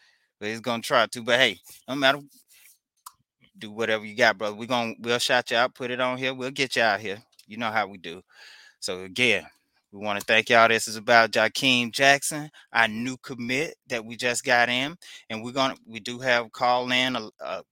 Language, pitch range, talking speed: English, 120-140 Hz, 215 wpm